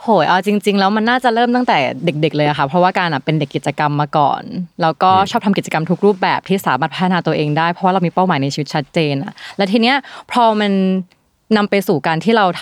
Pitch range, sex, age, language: 160-215 Hz, female, 20-39, Thai